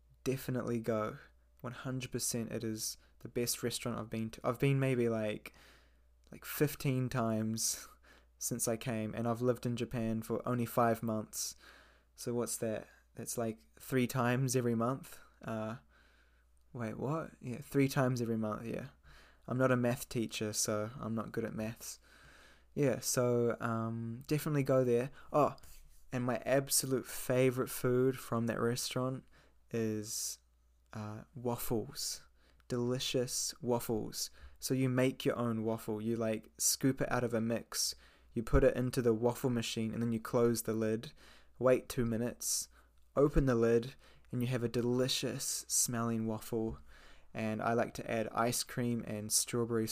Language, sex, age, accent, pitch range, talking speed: English, male, 20-39, Australian, 110-125 Hz, 155 wpm